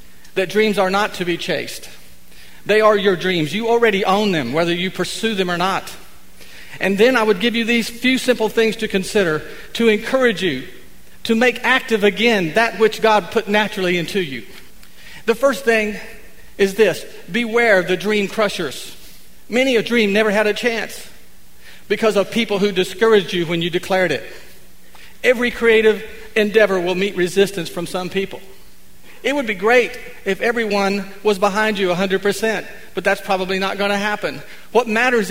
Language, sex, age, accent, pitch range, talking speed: English, male, 50-69, American, 175-220 Hz, 175 wpm